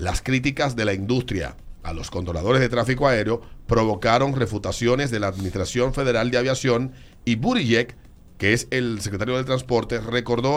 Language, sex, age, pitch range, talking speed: Spanish, male, 50-69, 105-130 Hz, 160 wpm